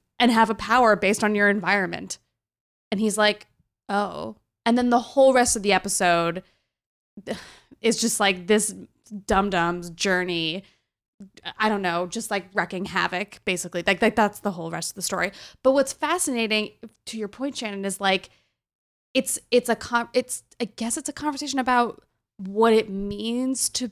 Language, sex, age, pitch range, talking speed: English, female, 20-39, 195-250 Hz, 170 wpm